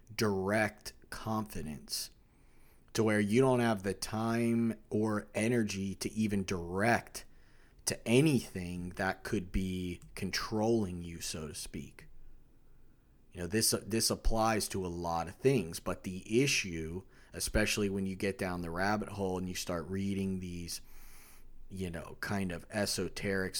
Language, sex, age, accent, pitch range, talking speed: English, male, 30-49, American, 95-110 Hz, 140 wpm